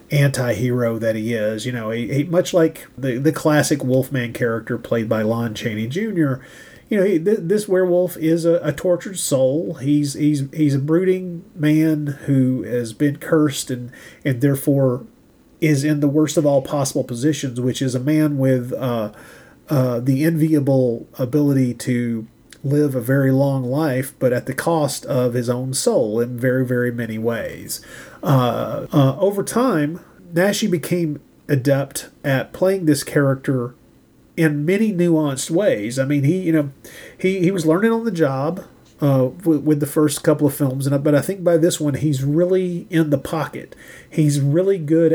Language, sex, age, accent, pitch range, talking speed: English, male, 40-59, American, 130-160 Hz, 175 wpm